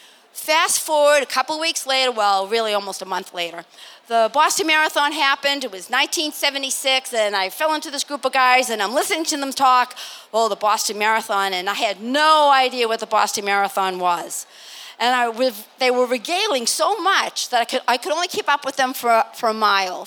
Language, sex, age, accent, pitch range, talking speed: English, female, 40-59, American, 230-295 Hz, 195 wpm